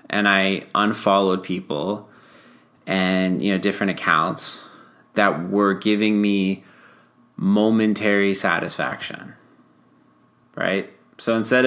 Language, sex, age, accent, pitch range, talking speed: English, male, 20-39, American, 95-115 Hz, 95 wpm